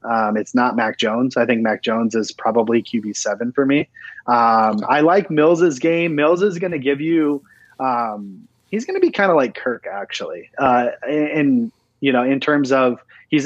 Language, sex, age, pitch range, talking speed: English, male, 30-49, 120-145 Hz, 195 wpm